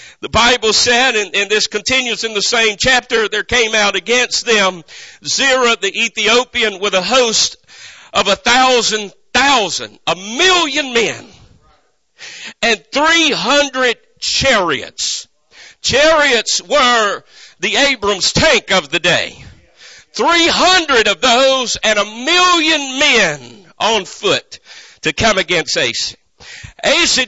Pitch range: 220-295 Hz